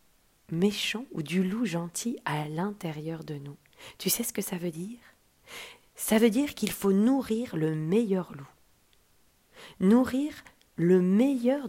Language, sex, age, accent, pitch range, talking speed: French, female, 40-59, French, 165-235 Hz, 145 wpm